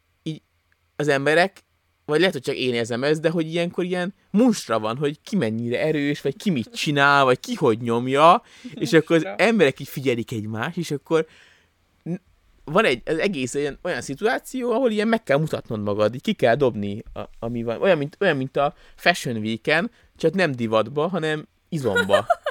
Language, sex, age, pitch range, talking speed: Hungarian, male, 20-39, 105-160 Hz, 175 wpm